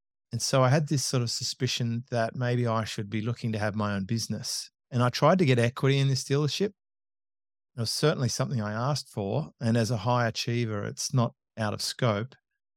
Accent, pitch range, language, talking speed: Australian, 110-135 Hz, English, 210 wpm